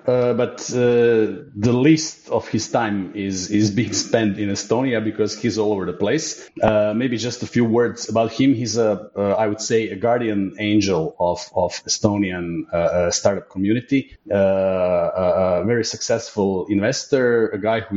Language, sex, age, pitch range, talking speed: Croatian, male, 30-49, 95-115 Hz, 175 wpm